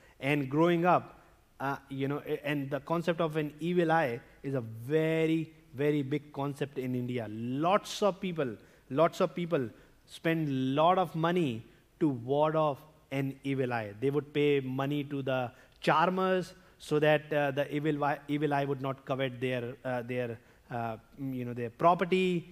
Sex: male